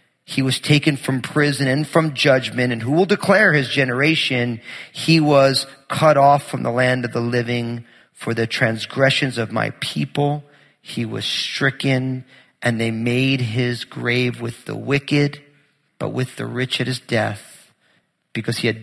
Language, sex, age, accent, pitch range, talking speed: English, male, 40-59, American, 130-205 Hz, 165 wpm